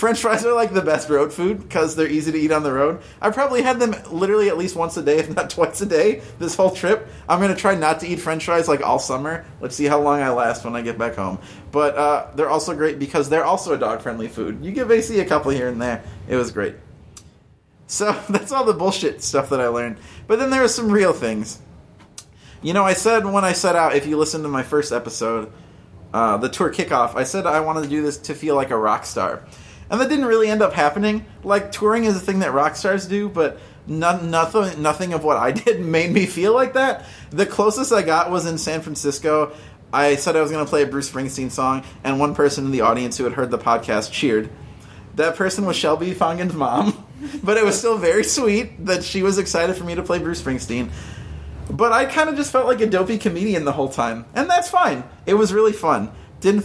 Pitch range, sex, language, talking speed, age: 140-205 Hz, male, English, 245 wpm, 20-39